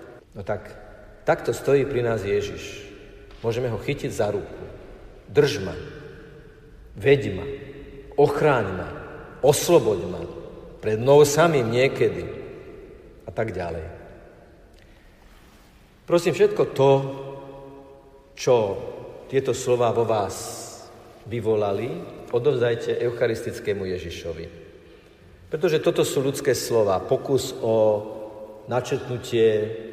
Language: Slovak